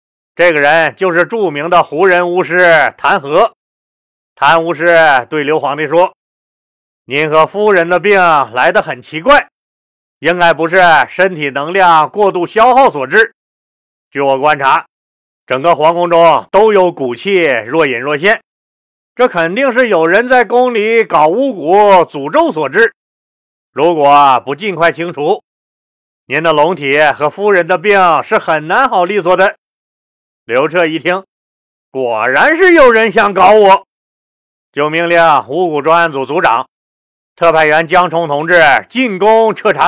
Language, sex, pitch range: Chinese, male, 150-200 Hz